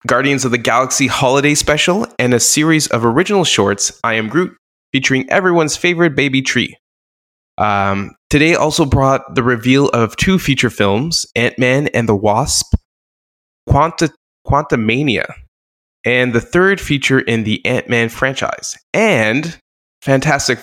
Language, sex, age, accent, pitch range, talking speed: English, male, 20-39, American, 105-140 Hz, 130 wpm